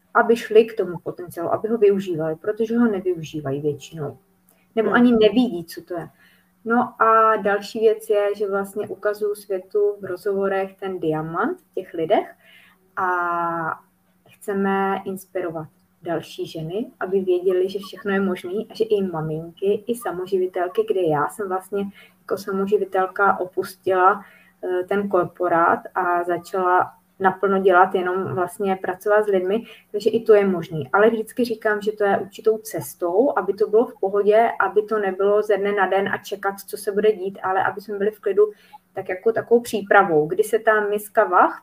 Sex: female